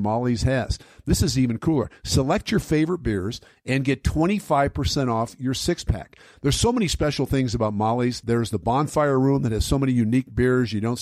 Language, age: English, 50-69